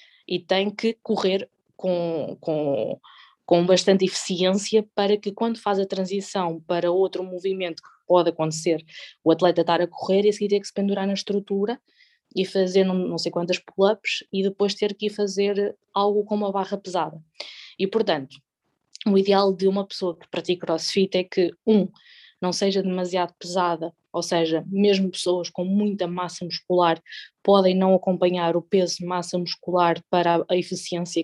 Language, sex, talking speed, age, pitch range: Portuguese, female, 170 wpm, 20-39, 175-200 Hz